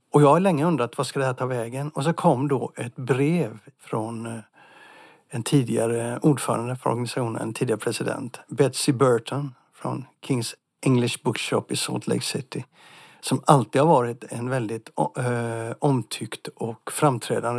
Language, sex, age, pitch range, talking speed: Swedish, male, 60-79, 120-145 Hz, 155 wpm